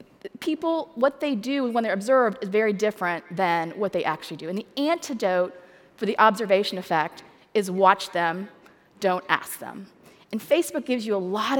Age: 30-49